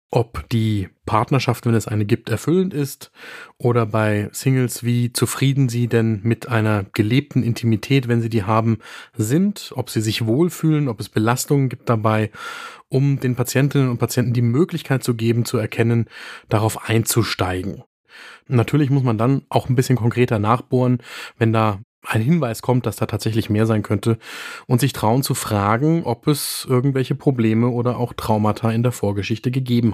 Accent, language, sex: German, German, male